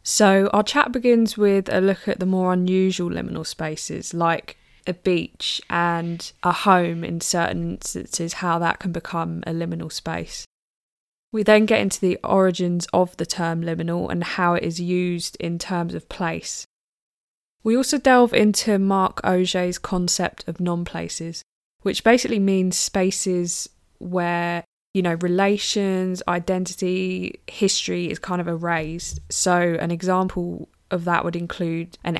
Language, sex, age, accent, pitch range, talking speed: English, female, 20-39, British, 170-190 Hz, 145 wpm